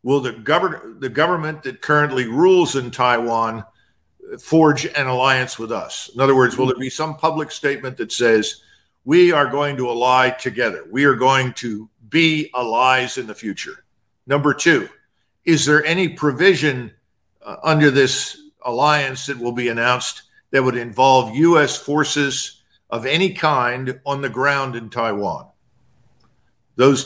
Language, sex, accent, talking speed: English, male, American, 155 wpm